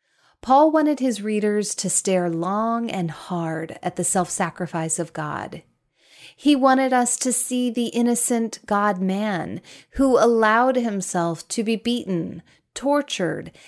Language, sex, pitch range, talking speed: English, female, 190-255 Hz, 125 wpm